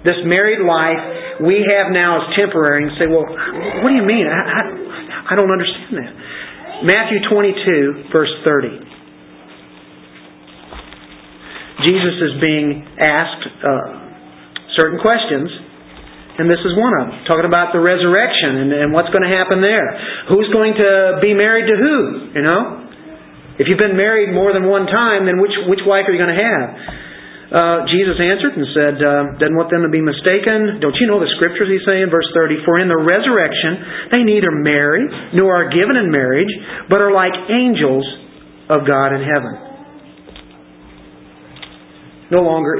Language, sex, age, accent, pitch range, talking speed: English, male, 50-69, American, 145-195 Hz, 165 wpm